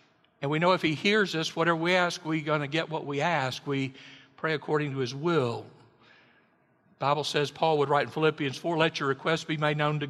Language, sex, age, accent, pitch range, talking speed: English, male, 60-79, American, 135-170 Hz, 230 wpm